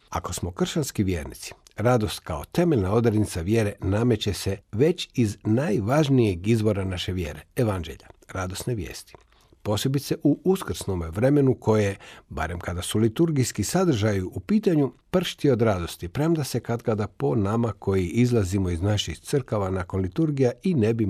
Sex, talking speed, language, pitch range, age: male, 145 wpm, Croatian, 95-125 Hz, 50-69